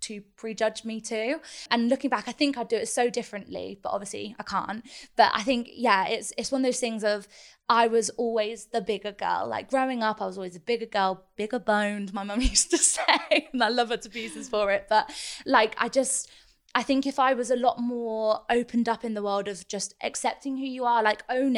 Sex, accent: female, British